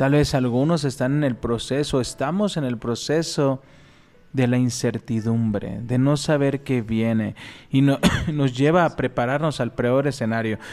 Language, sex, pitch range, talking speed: Spanish, male, 115-150 Hz, 150 wpm